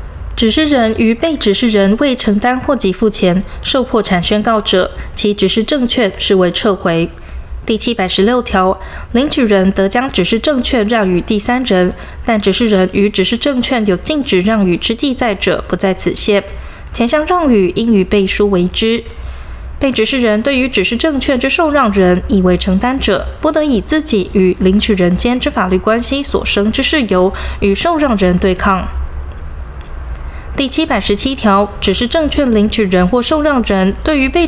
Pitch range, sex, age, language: 185-255 Hz, female, 20-39, Chinese